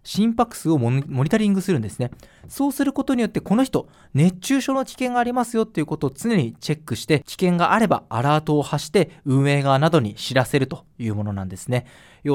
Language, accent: Japanese, native